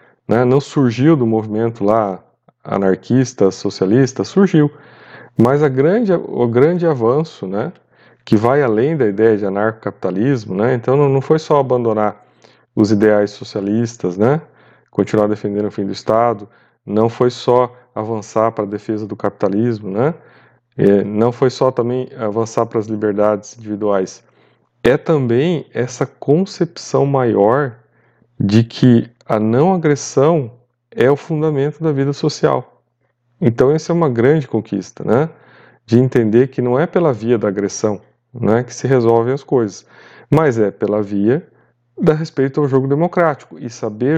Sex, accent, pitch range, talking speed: male, Brazilian, 105-135 Hz, 140 wpm